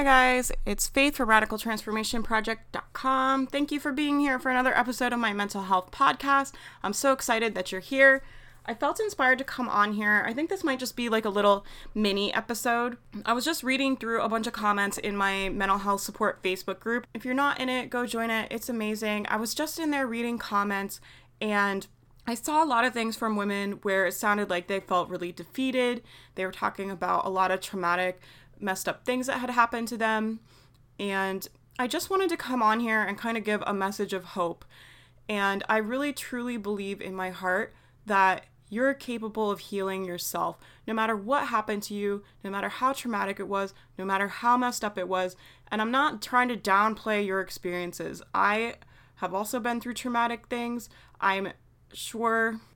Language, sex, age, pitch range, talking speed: English, female, 20-39, 195-245 Hz, 200 wpm